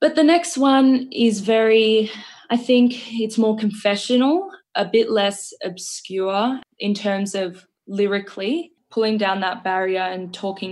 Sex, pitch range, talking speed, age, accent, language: female, 185-220 Hz, 140 wpm, 10-29, Australian, English